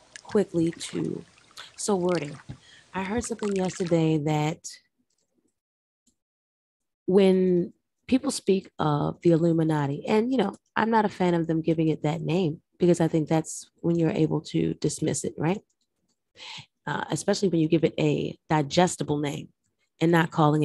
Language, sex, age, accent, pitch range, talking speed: English, female, 30-49, American, 150-185 Hz, 150 wpm